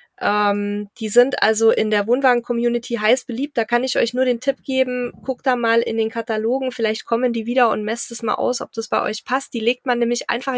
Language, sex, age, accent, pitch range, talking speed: German, female, 20-39, German, 205-240 Hz, 235 wpm